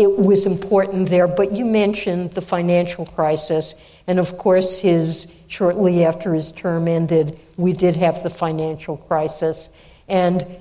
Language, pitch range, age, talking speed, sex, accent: English, 170-185 Hz, 60-79, 145 wpm, female, American